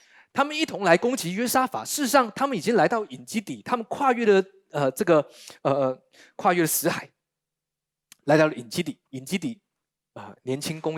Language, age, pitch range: Chinese, 20-39, 150-230 Hz